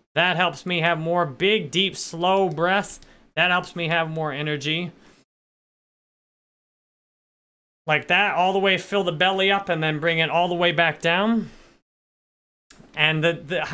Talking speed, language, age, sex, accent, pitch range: 155 wpm, English, 30-49, male, American, 160-200 Hz